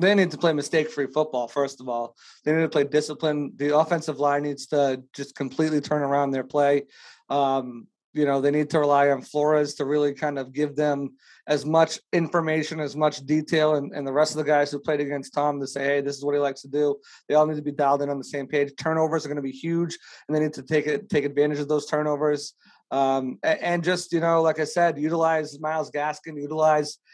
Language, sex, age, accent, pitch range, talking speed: English, male, 30-49, American, 145-155 Hz, 235 wpm